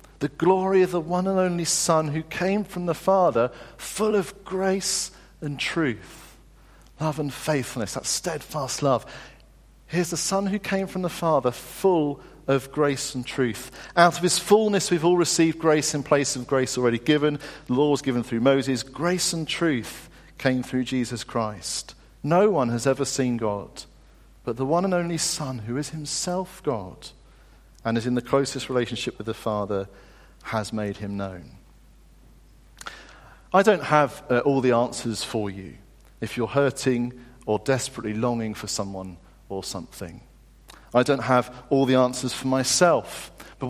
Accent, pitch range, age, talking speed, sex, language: British, 125-175 Hz, 50-69, 165 wpm, male, English